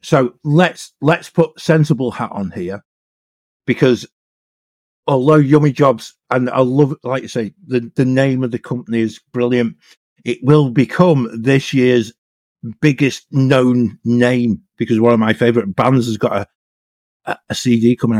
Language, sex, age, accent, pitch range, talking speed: English, male, 50-69, British, 110-135 Hz, 150 wpm